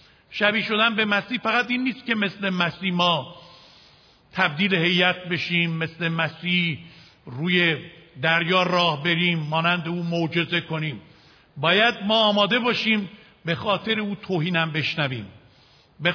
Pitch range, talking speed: 170-220 Hz, 125 wpm